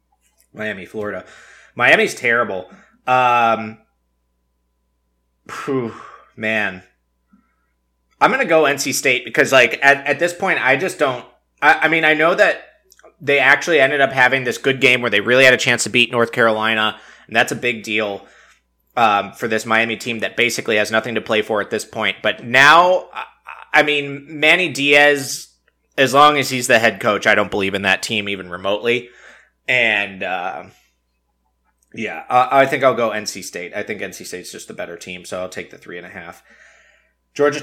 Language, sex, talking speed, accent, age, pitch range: English, male, 185 wpm, American, 20-39, 100-135 Hz